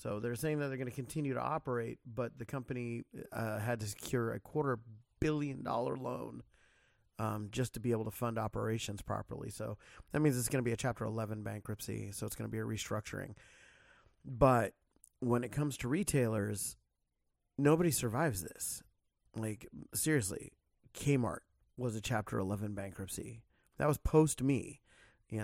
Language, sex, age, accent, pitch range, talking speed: English, male, 30-49, American, 105-130 Hz, 165 wpm